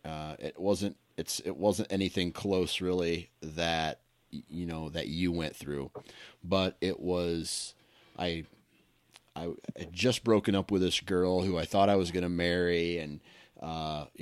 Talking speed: 160 wpm